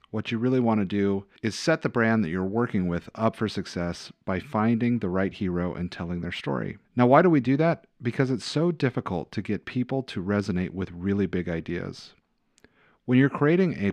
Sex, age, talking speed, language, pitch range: male, 40-59, 210 wpm, English, 90-115 Hz